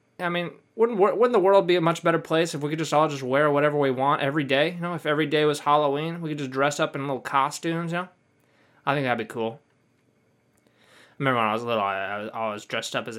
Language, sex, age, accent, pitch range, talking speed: English, male, 20-39, American, 130-170 Hz, 260 wpm